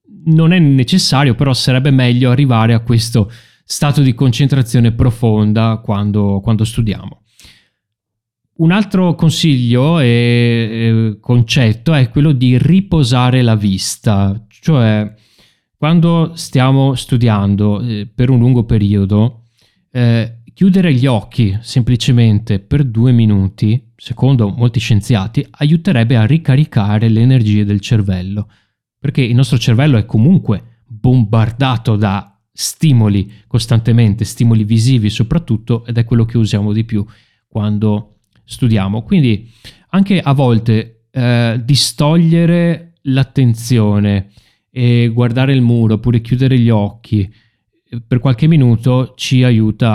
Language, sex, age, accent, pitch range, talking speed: Italian, male, 30-49, native, 110-130 Hz, 115 wpm